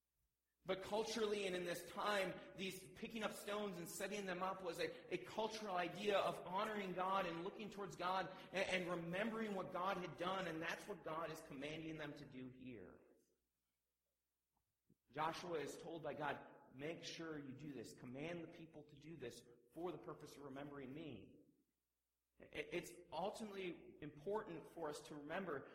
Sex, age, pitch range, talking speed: male, 40-59, 145-190 Hz, 170 wpm